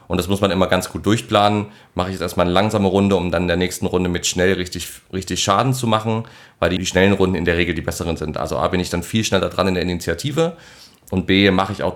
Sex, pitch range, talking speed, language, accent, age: male, 90-110 Hz, 275 wpm, German, German, 30-49